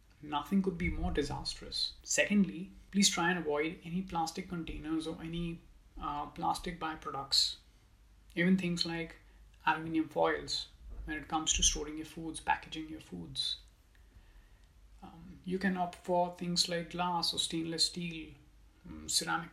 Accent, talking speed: Indian, 140 wpm